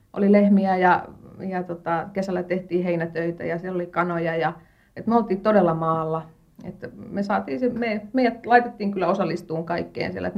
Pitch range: 175-210 Hz